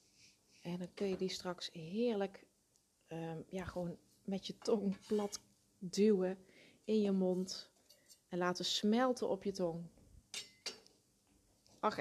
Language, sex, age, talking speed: Dutch, female, 30-49, 125 wpm